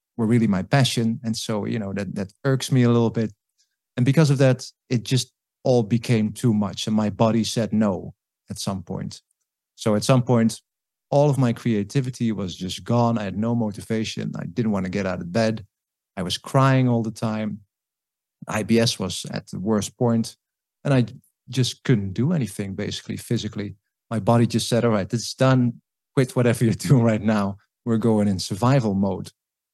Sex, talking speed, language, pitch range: male, 190 wpm, English, 105-120 Hz